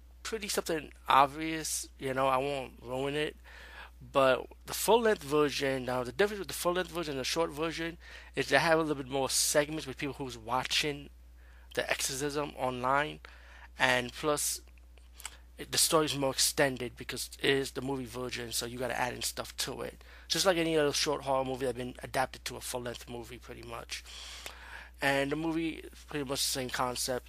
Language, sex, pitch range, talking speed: English, male, 120-140 Hz, 190 wpm